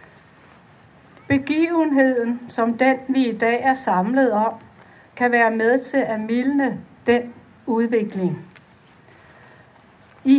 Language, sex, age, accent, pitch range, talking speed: Danish, female, 60-79, native, 215-260 Hz, 105 wpm